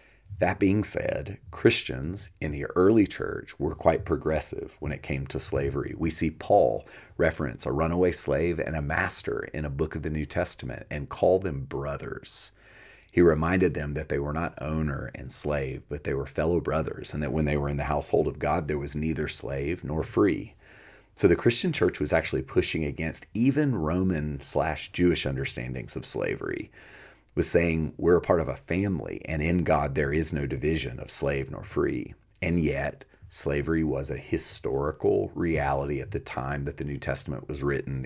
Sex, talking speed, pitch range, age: male, 185 wpm, 70-85 Hz, 40-59